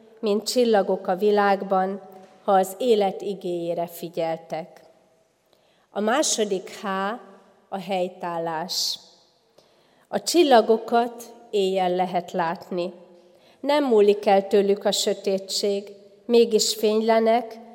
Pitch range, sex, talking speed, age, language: 175-210 Hz, female, 90 wpm, 30-49, Hungarian